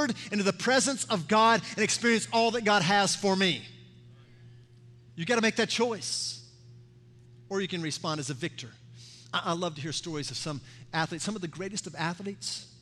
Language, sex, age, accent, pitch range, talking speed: English, male, 50-69, American, 120-180 Hz, 190 wpm